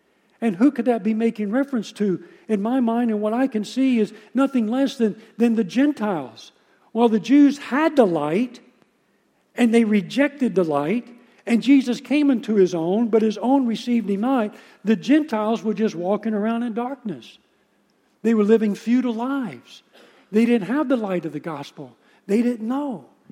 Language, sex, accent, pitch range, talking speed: English, male, American, 175-240 Hz, 180 wpm